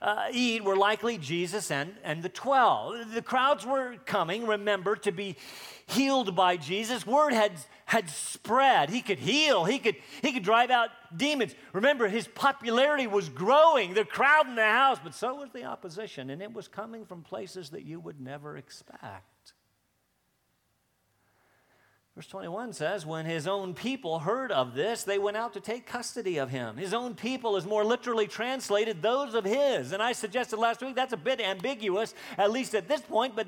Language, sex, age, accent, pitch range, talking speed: English, male, 40-59, American, 195-255 Hz, 180 wpm